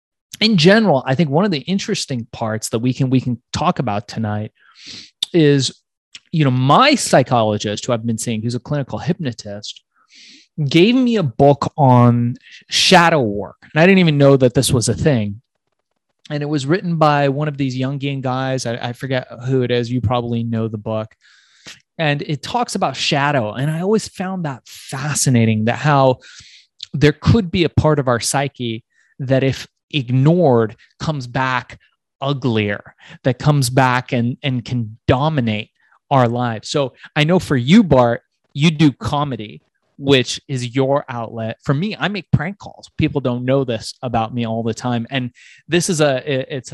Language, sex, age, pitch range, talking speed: English, male, 20-39, 120-150 Hz, 175 wpm